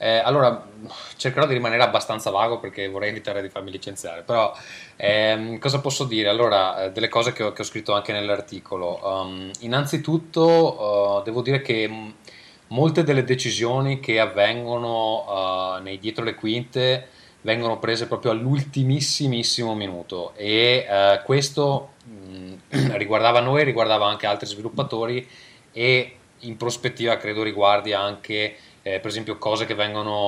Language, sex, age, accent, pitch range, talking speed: Italian, male, 20-39, native, 100-120 Hz, 130 wpm